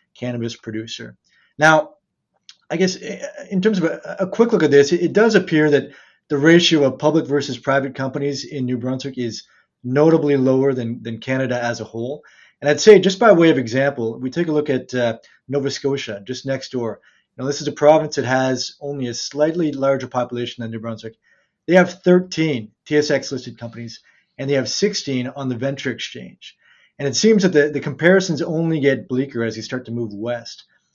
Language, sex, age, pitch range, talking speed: English, male, 30-49, 125-155 Hz, 195 wpm